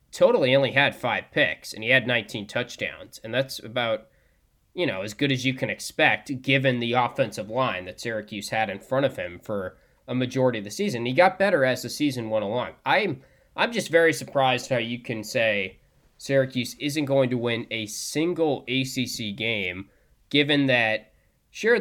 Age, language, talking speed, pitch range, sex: 20-39, English, 185 wpm, 110-140 Hz, male